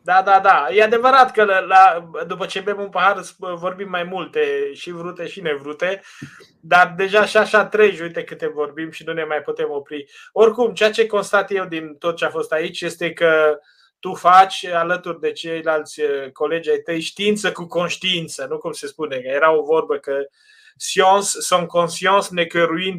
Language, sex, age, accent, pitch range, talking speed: Romanian, male, 20-39, native, 165-215 Hz, 185 wpm